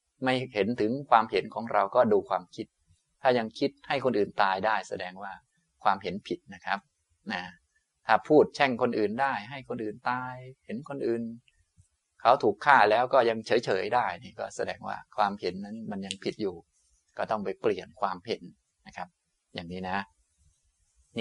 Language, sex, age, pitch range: Thai, male, 20-39, 95-125 Hz